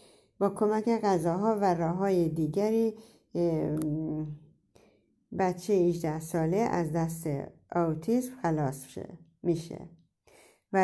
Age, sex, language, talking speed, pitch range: 60-79, female, Persian, 90 wpm, 160-205 Hz